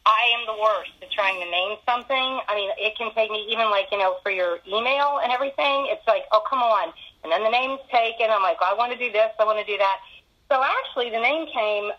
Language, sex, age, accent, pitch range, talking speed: English, female, 40-59, American, 200-265 Hz, 260 wpm